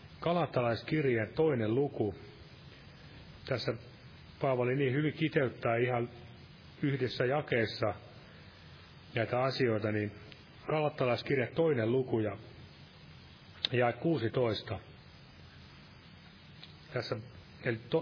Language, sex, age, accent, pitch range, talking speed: Finnish, male, 30-49, native, 110-150 Hz, 70 wpm